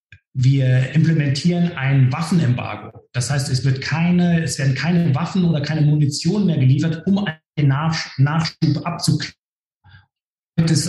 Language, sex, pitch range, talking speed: German, male, 135-165 Hz, 130 wpm